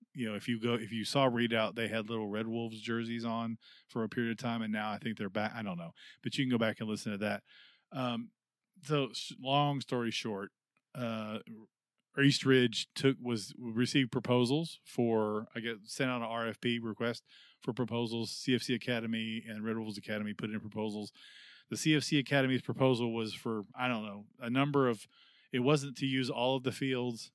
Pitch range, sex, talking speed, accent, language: 110-130 Hz, male, 195 wpm, American, English